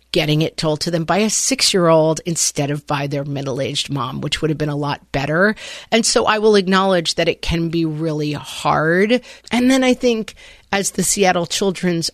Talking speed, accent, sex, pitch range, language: 200 wpm, American, female, 155-200 Hz, English